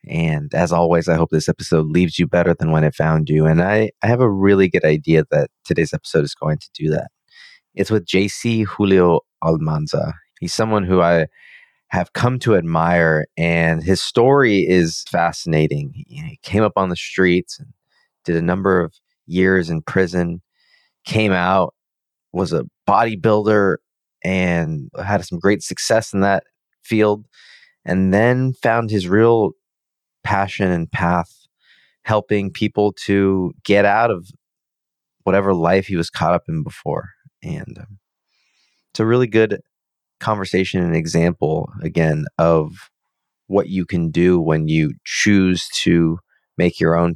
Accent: American